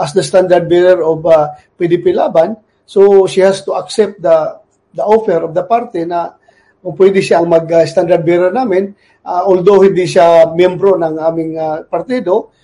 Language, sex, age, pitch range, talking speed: Filipino, male, 40-59, 175-215 Hz, 175 wpm